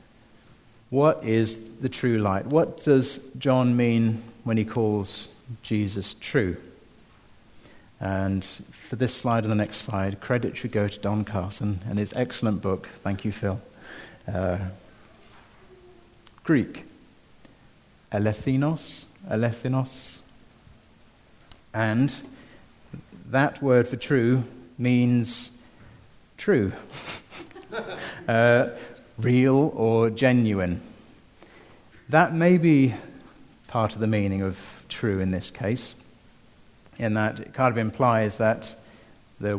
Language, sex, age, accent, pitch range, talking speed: English, male, 50-69, British, 100-120 Hz, 105 wpm